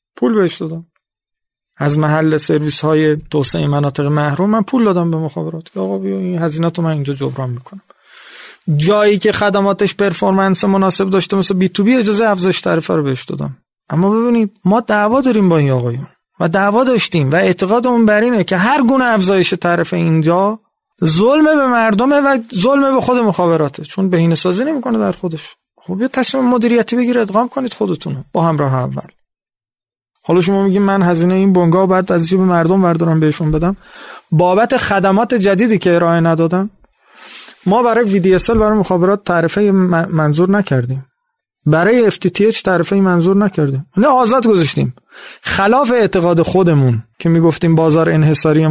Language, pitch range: English, 160-210 Hz